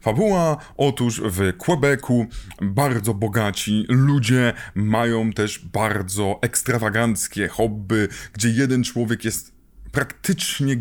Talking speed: 95 wpm